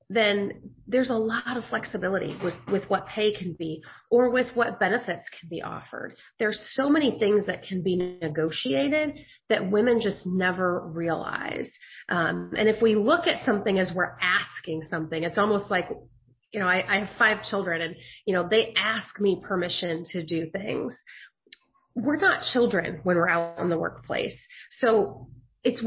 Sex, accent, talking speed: female, American, 170 wpm